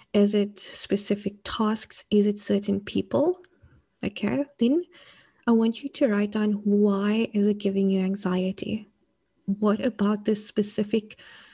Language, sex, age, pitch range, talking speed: English, female, 20-39, 200-220 Hz, 135 wpm